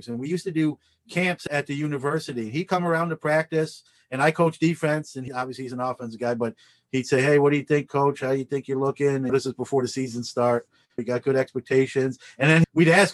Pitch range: 120-145 Hz